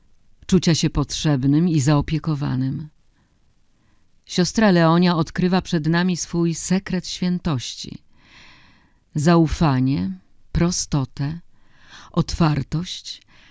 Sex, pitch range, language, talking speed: female, 140-175 Hz, Polish, 70 wpm